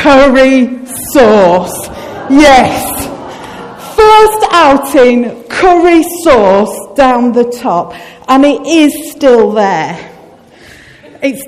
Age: 40-59